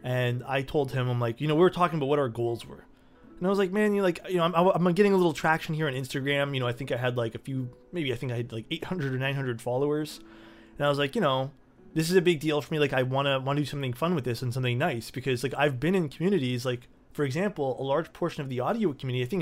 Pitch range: 125-150 Hz